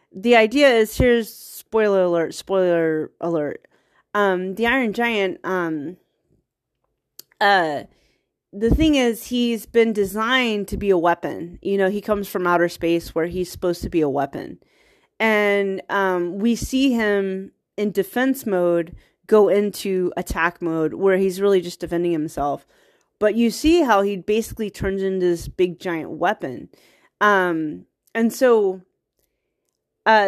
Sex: female